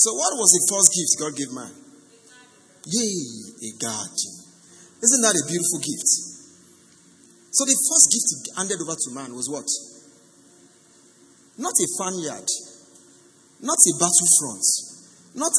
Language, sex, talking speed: English, male, 130 wpm